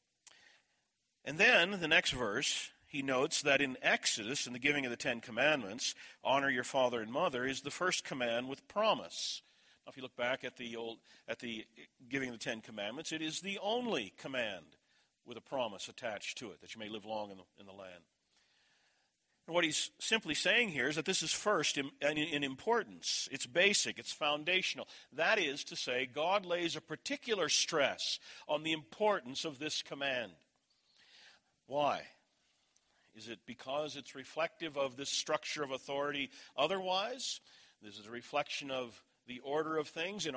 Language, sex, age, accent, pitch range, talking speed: English, male, 50-69, American, 130-160 Hz, 170 wpm